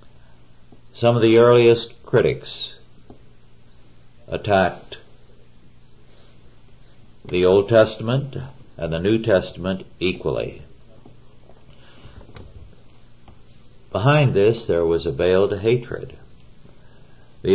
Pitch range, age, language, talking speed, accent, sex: 80-120 Hz, 60-79, English, 75 wpm, American, male